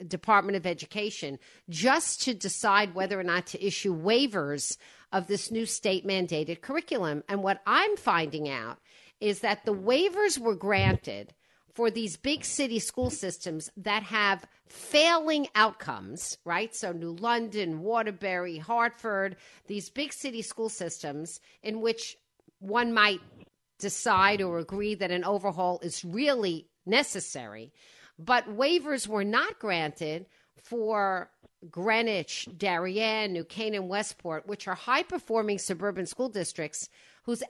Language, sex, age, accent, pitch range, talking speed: English, female, 50-69, American, 180-230 Hz, 130 wpm